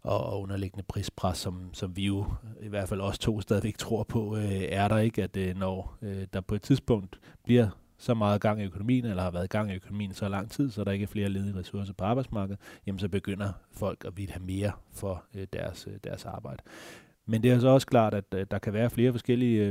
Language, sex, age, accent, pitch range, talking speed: Danish, male, 30-49, native, 95-115 Hz, 235 wpm